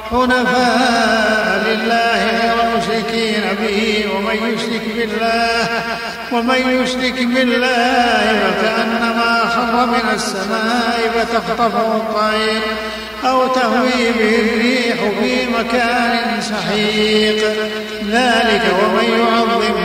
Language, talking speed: Arabic, 85 wpm